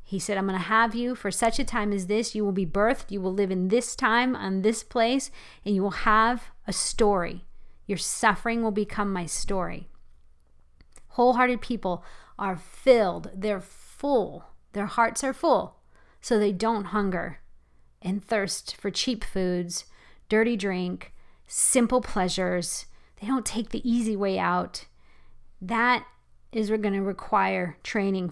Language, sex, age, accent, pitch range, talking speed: English, female, 40-59, American, 195-240 Hz, 155 wpm